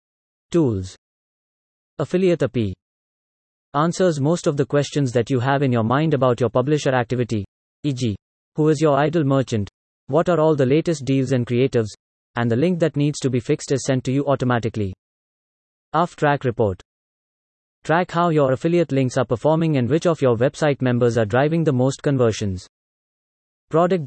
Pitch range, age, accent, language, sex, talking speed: 120-155 Hz, 20-39, Indian, English, male, 165 wpm